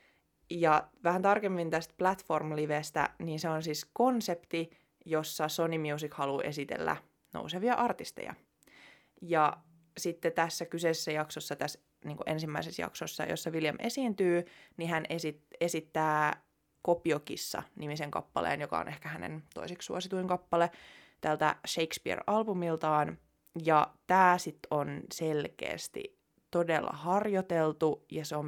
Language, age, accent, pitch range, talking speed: Finnish, 20-39, native, 150-180 Hz, 110 wpm